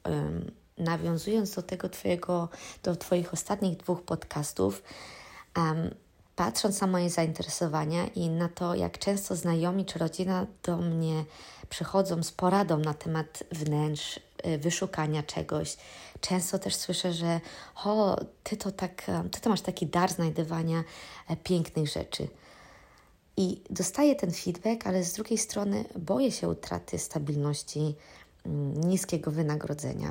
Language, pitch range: Polish, 155-185 Hz